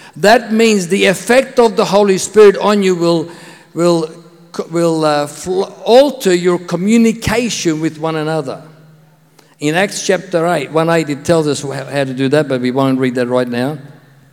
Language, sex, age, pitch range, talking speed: English, male, 50-69, 135-175 Hz, 170 wpm